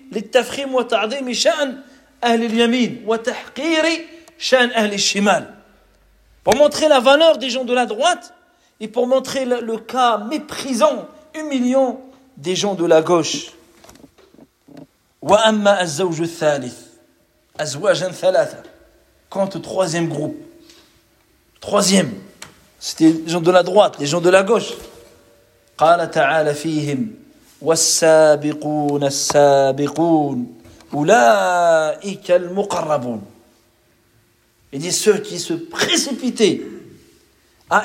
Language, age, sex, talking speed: French, 40-59, male, 70 wpm